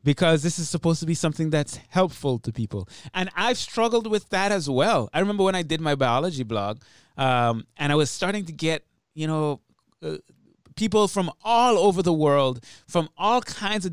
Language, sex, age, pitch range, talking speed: English, male, 30-49, 145-185 Hz, 200 wpm